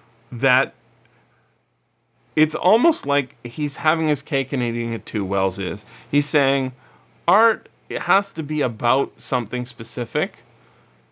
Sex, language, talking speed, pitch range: male, English, 125 wpm, 115-145 Hz